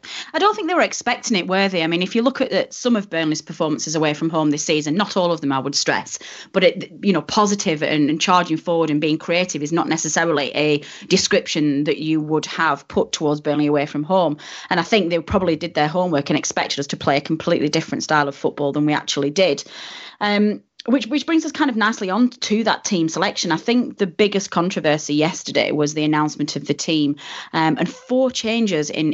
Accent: British